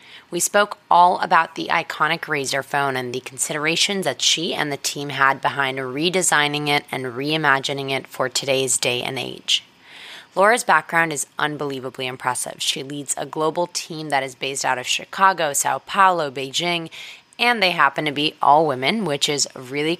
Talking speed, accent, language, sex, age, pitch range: 170 wpm, American, English, female, 20-39, 135-170 Hz